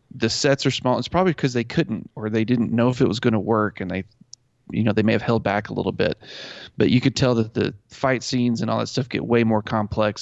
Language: English